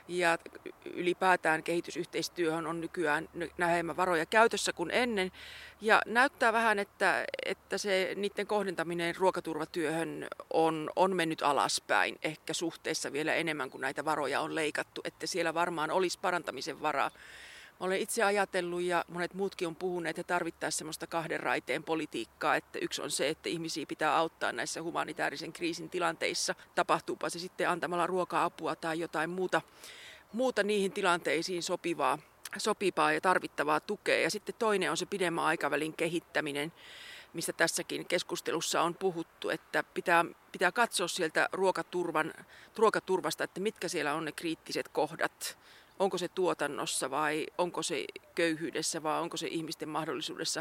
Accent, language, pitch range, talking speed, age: native, Finnish, 160-190 Hz, 140 wpm, 30-49